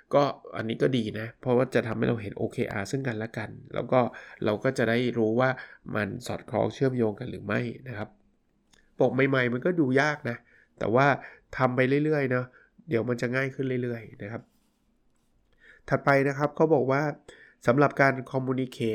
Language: Thai